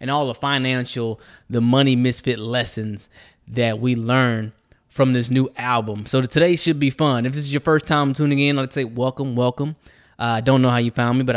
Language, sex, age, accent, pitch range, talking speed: English, male, 20-39, American, 115-135 Hz, 210 wpm